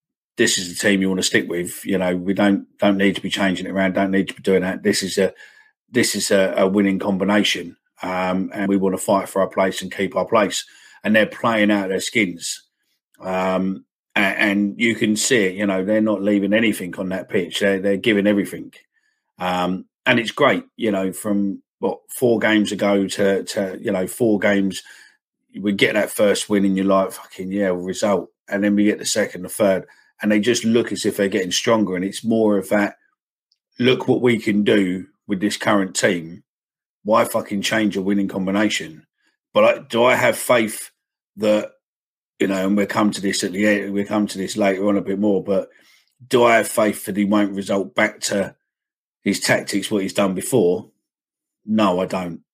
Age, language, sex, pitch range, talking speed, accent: 40-59, English, male, 95-105 Hz, 215 wpm, British